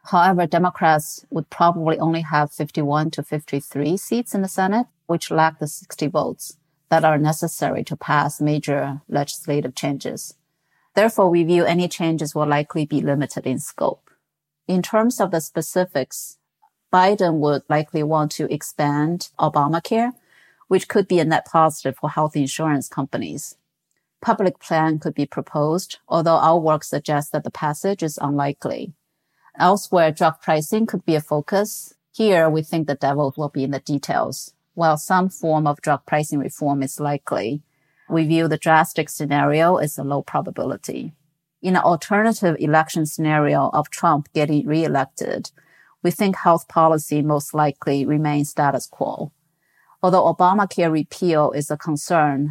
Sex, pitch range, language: female, 150-170 Hz, English